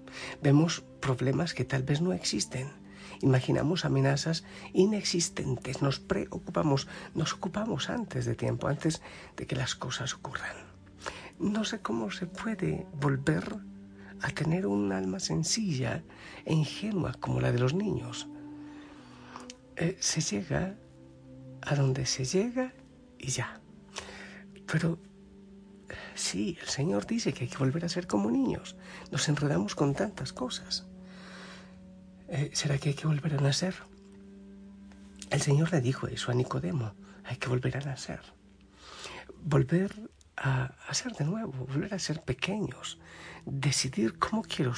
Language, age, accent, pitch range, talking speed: Spanish, 60-79, Spanish, 130-185 Hz, 135 wpm